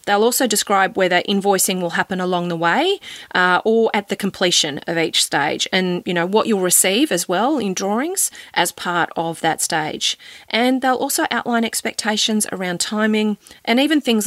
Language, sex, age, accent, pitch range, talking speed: English, female, 30-49, Australian, 180-235 Hz, 180 wpm